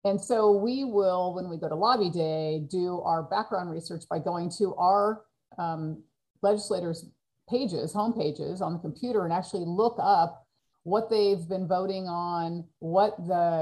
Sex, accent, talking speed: female, American, 160 wpm